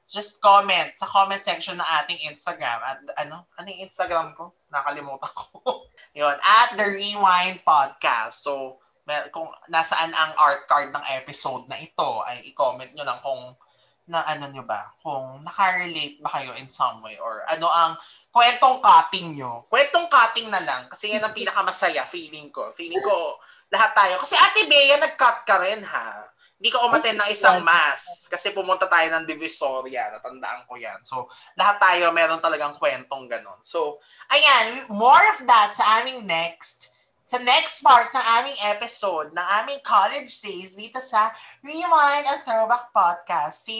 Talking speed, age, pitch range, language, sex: 165 wpm, 20-39, 160-235 Hz, Filipino, male